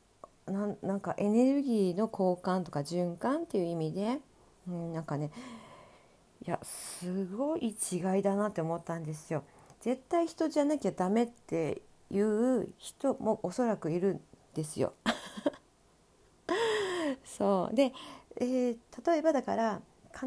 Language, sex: Japanese, female